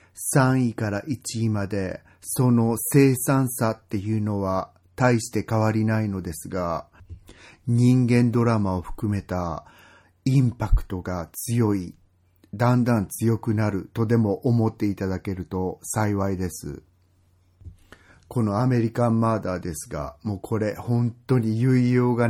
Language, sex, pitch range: Japanese, male, 90-120 Hz